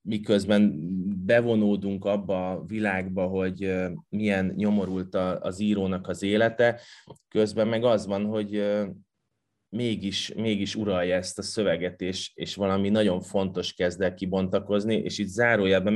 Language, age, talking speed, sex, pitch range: Hungarian, 20-39, 130 wpm, male, 95-105 Hz